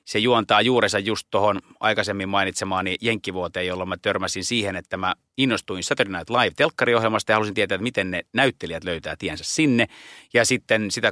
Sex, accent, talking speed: male, native, 165 wpm